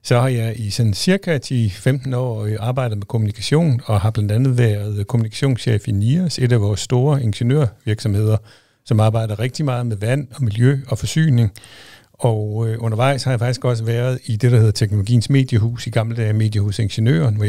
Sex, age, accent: male, 60-79, native